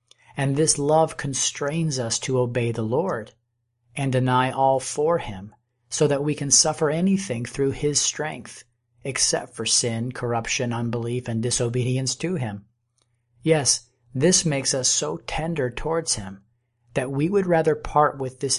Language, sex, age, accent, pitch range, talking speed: English, male, 40-59, American, 120-145 Hz, 150 wpm